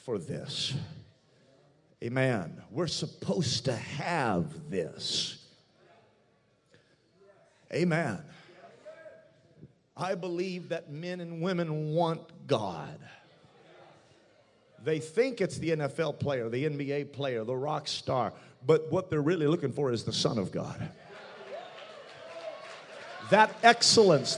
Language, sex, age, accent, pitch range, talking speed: English, male, 40-59, American, 140-185 Hz, 105 wpm